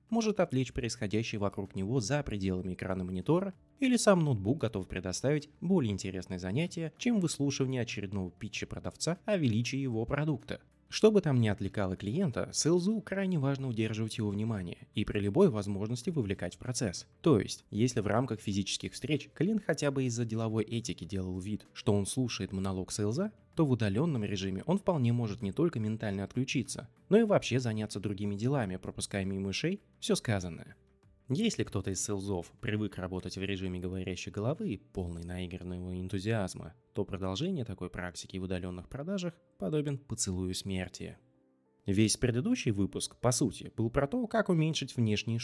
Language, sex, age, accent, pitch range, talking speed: Russian, male, 20-39, native, 95-145 Hz, 160 wpm